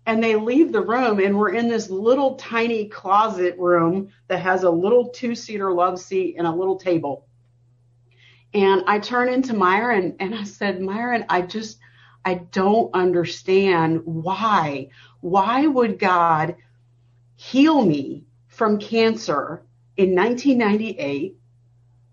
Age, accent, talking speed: 40-59, American, 130 wpm